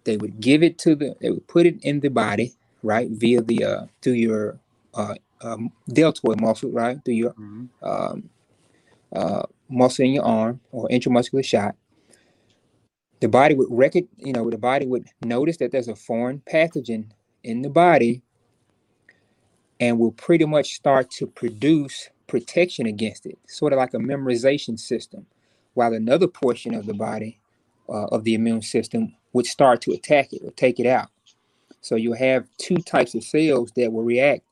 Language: English